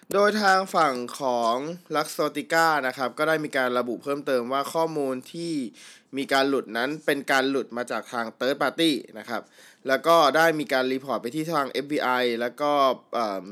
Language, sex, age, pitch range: Thai, male, 20-39, 120-160 Hz